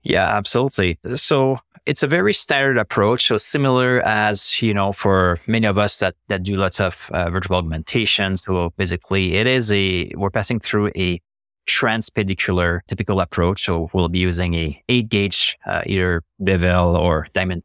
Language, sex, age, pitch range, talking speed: English, male, 20-39, 90-110 Hz, 165 wpm